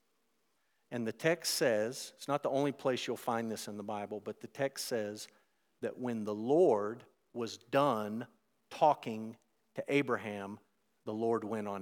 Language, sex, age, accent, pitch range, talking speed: English, male, 50-69, American, 115-140 Hz, 160 wpm